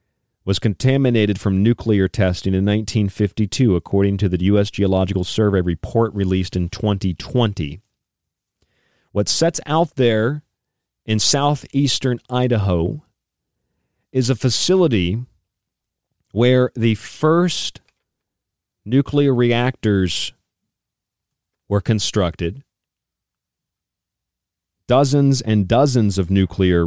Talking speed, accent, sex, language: 85 wpm, American, male, English